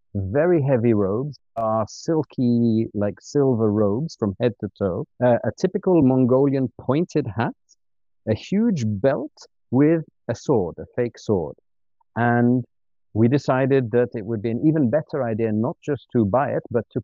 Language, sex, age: English, male, 50-69